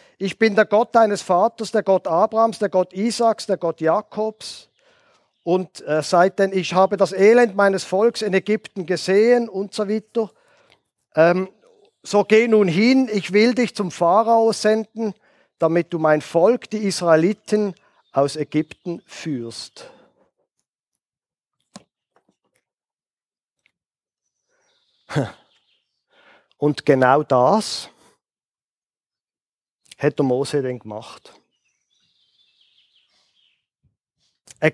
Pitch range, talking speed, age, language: 155-220 Hz, 100 wpm, 50-69, German